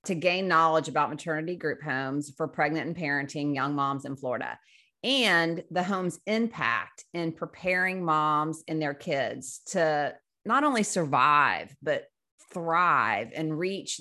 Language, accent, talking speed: English, American, 140 wpm